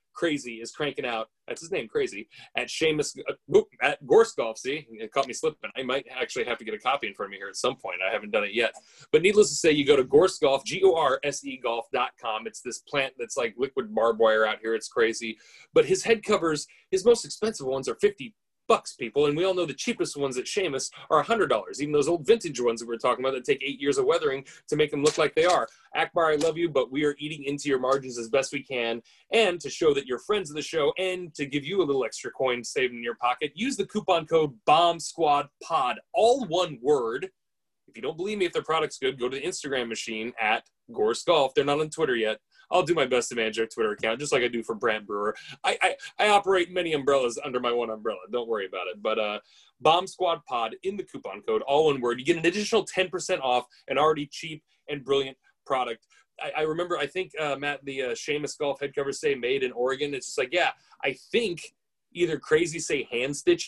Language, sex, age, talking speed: English, male, 30-49, 245 wpm